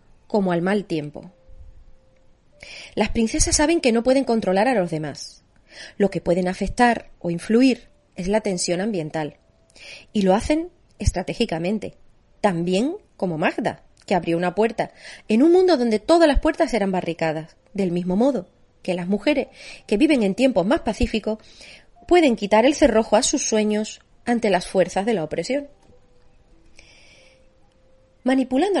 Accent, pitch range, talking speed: Spanish, 185-265 Hz, 145 wpm